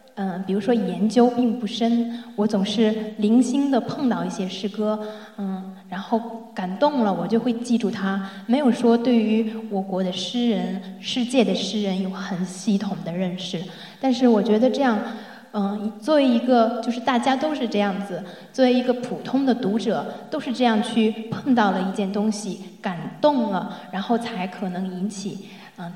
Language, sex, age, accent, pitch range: Chinese, female, 20-39, native, 195-240 Hz